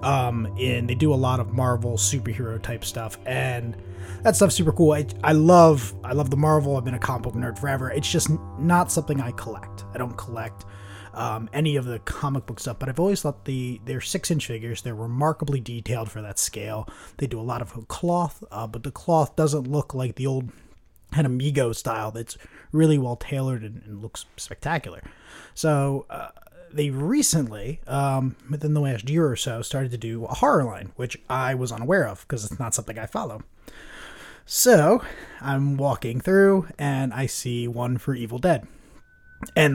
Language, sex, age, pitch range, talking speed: English, male, 20-39, 115-150 Hz, 190 wpm